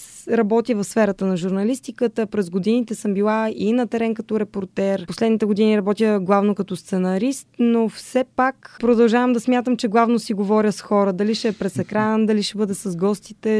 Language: Bulgarian